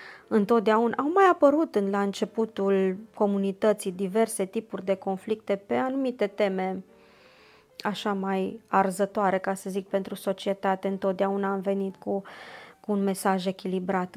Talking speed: 125 wpm